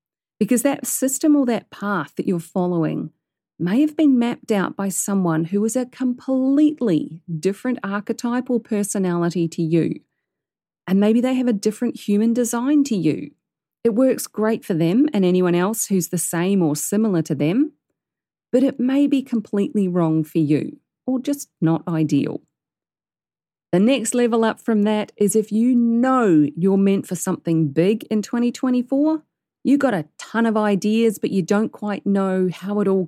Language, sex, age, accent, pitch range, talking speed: English, female, 40-59, Australian, 170-245 Hz, 170 wpm